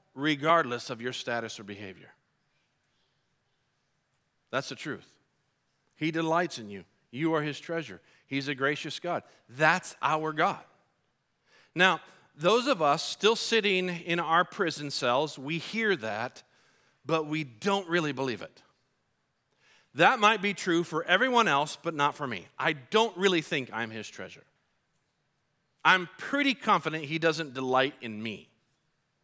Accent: American